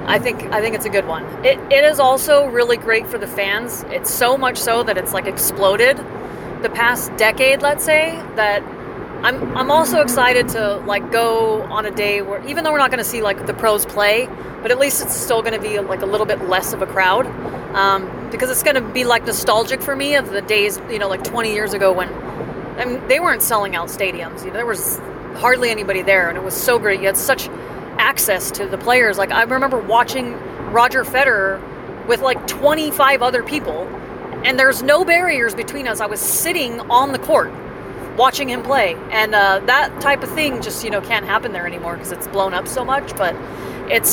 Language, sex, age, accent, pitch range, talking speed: English, female, 30-49, American, 205-270 Hz, 220 wpm